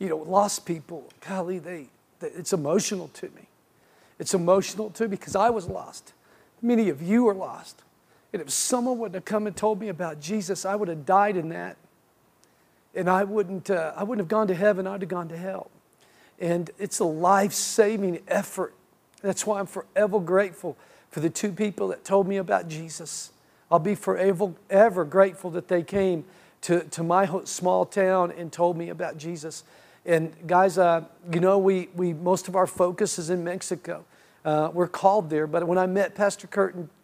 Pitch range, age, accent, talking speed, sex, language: 165-195 Hz, 50-69, American, 190 wpm, male, English